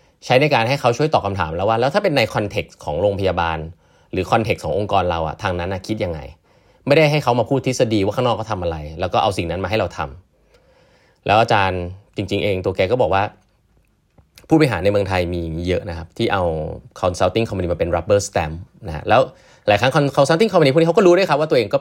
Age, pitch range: 20-39, 85-110 Hz